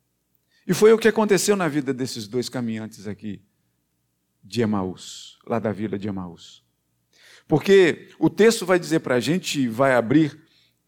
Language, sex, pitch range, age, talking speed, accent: Portuguese, male, 120-170 Hz, 50-69, 155 wpm, Brazilian